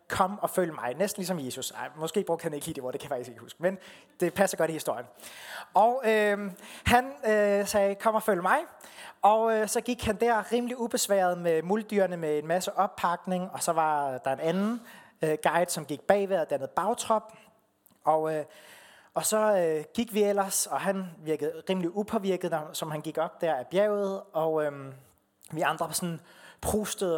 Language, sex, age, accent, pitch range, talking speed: Danish, male, 30-49, native, 155-205 Hz, 200 wpm